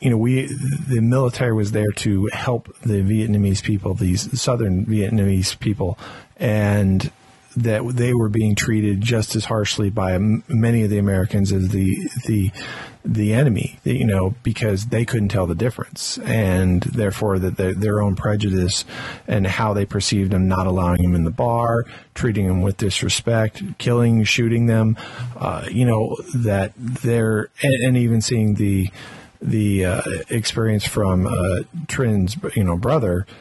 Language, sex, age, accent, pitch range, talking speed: English, male, 40-59, American, 100-115 Hz, 155 wpm